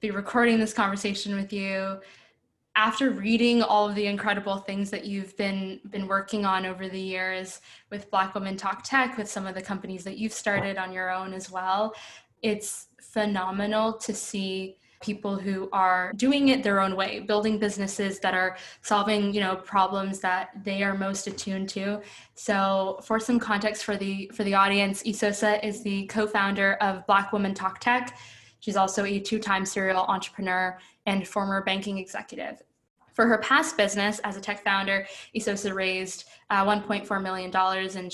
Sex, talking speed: female, 170 wpm